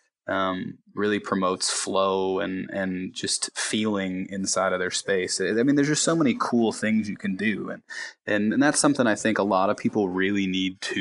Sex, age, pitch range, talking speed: male, 20-39, 95-110 Hz, 200 wpm